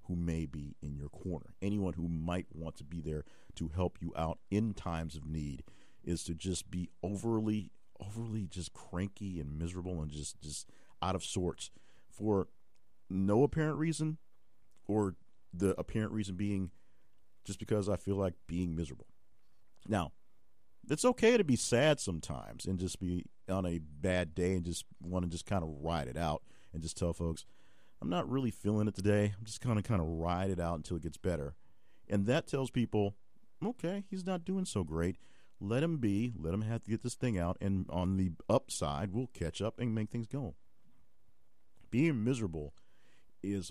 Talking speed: 185 wpm